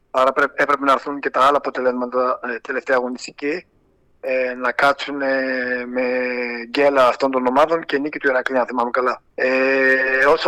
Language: Greek